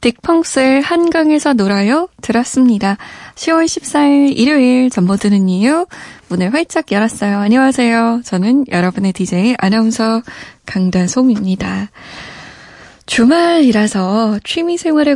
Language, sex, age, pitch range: Korean, female, 20-39, 200-295 Hz